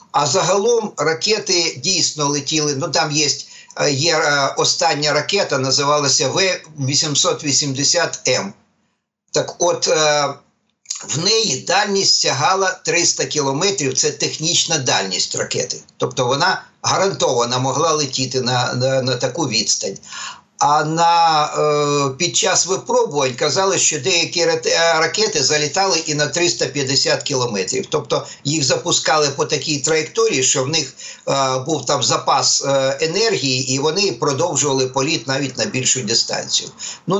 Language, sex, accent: Ukrainian, male, native